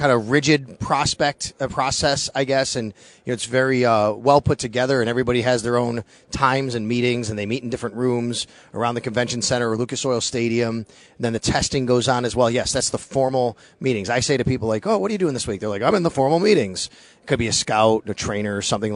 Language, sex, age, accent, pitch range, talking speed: English, male, 30-49, American, 115-145 Hz, 245 wpm